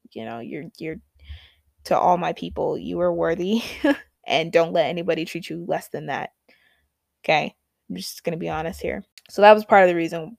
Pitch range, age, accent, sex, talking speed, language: 165-210 Hz, 20-39, American, female, 195 wpm, English